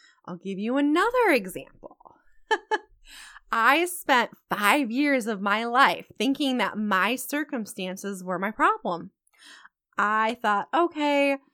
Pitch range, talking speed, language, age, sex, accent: 195-275 Hz, 115 wpm, English, 20-39, female, American